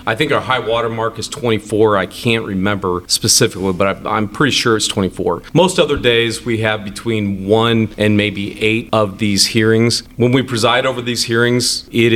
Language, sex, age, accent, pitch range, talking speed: English, male, 40-59, American, 100-120 Hz, 190 wpm